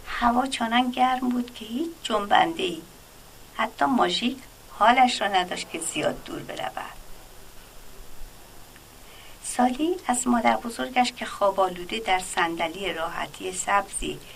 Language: Persian